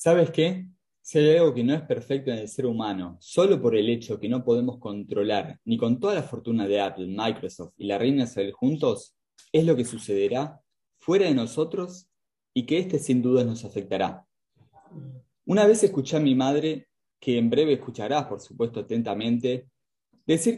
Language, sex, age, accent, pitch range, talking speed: Spanish, male, 20-39, Argentinian, 115-165 Hz, 180 wpm